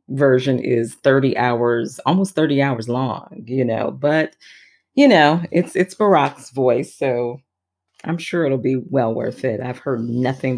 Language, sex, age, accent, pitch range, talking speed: English, female, 40-59, American, 120-150 Hz, 160 wpm